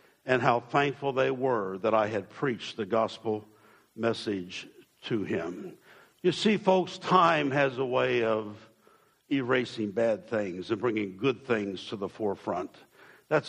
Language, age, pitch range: English, 60-79, 120-150 Hz